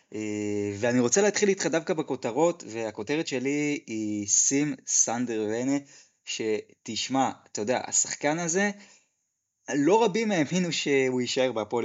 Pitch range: 125-175 Hz